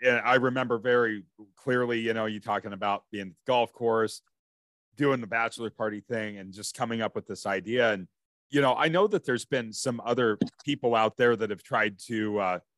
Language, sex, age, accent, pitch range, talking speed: English, male, 40-59, American, 105-135 Hz, 210 wpm